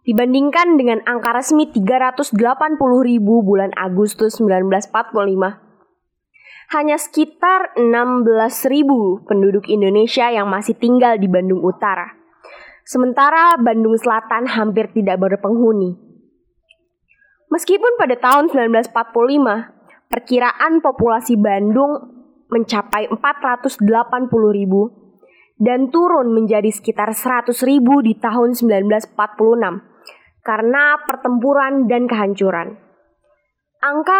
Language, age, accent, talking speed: Indonesian, 20-39, native, 80 wpm